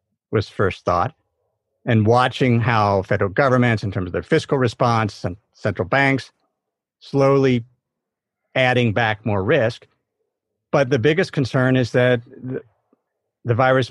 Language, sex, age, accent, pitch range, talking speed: English, male, 50-69, American, 110-135 Hz, 130 wpm